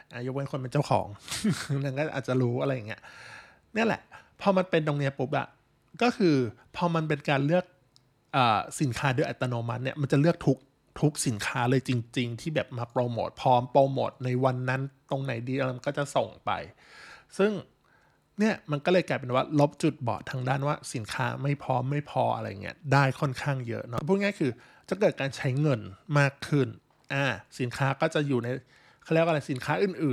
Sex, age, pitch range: male, 20-39, 125-150 Hz